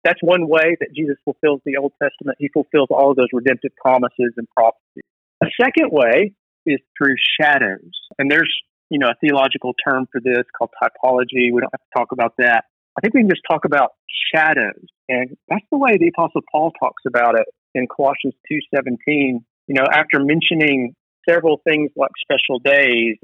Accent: American